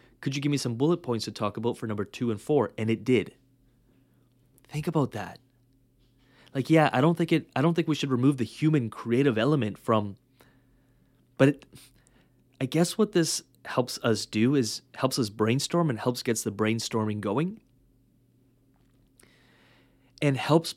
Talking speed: 170 wpm